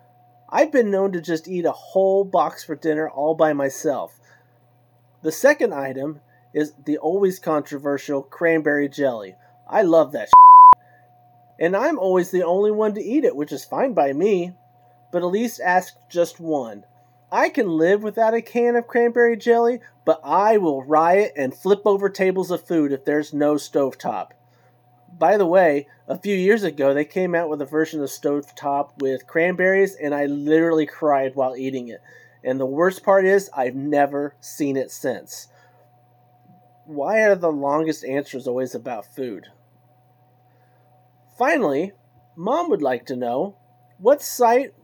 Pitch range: 125-185 Hz